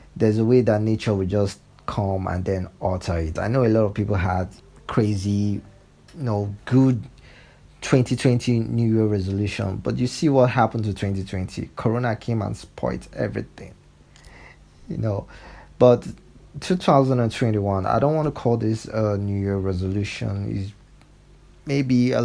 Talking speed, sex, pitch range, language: 150 wpm, male, 95-115 Hz, English